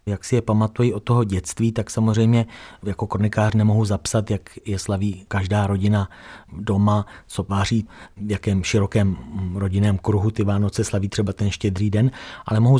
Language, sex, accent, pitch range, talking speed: Czech, male, native, 95-115 Hz, 160 wpm